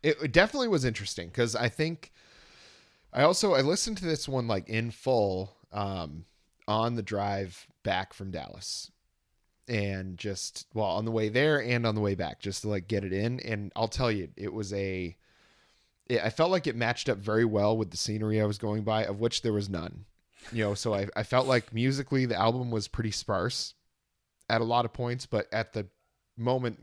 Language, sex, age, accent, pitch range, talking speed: English, male, 30-49, American, 100-115 Hz, 205 wpm